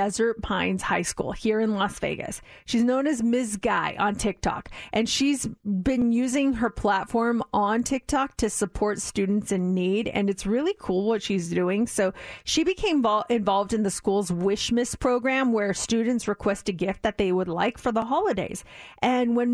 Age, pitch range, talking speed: 40-59, 200-245 Hz, 180 wpm